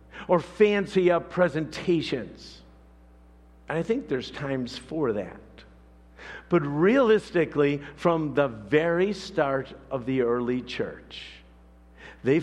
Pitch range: 105-175 Hz